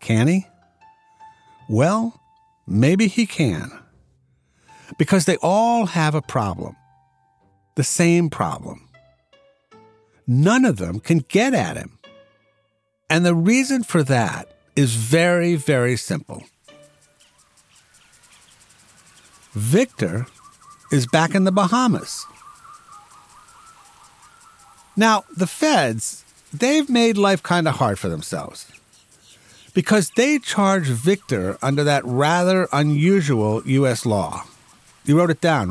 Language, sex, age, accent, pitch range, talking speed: English, male, 60-79, American, 130-195 Hz, 105 wpm